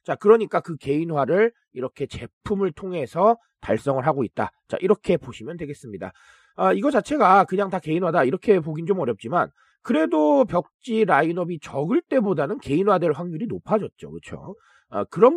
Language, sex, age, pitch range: Korean, male, 40-59, 155-235 Hz